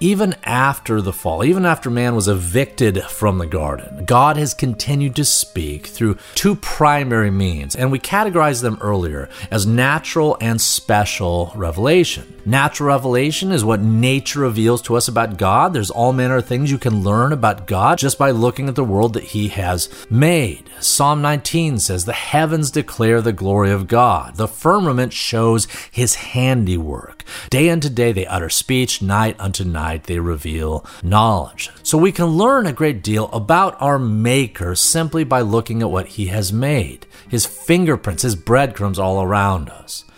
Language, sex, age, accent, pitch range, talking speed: English, male, 40-59, American, 100-155 Hz, 170 wpm